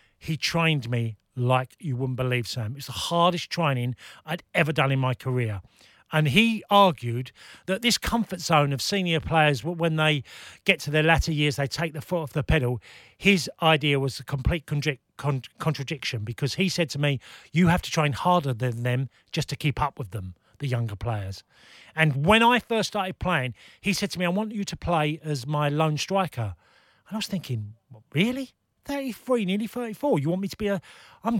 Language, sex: English, male